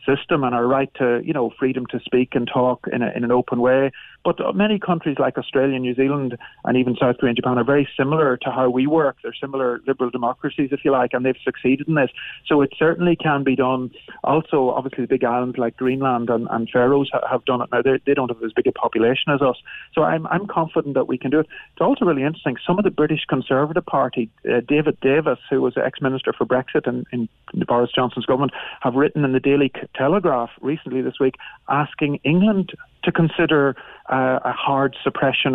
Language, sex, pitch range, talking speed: English, male, 125-145 Hz, 220 wpm